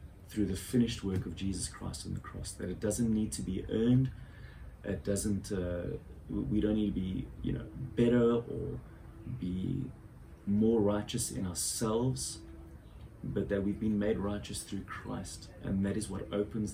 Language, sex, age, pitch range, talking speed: English, male, 30-49, 90-105 Hz, 170 wpm